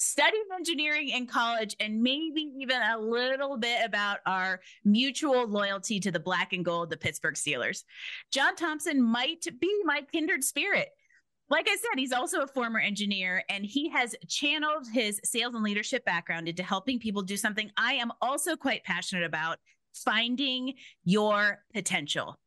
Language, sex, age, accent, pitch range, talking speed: English, female, 30-49, American, 195-275 Hz, 160 wpm